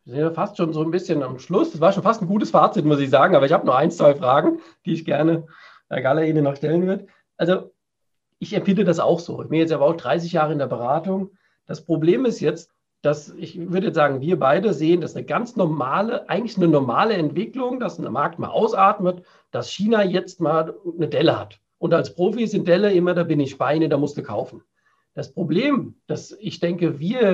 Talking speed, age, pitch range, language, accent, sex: 225 wpm, 50-69, 160-200 Hz, German, German, male